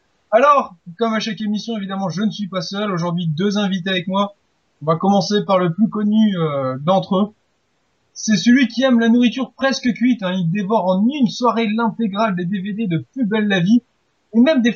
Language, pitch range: French, 185-240 Hz